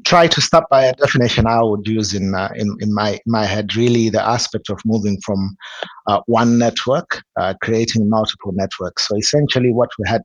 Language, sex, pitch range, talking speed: English, male, 105-120 Hz, 200 wpm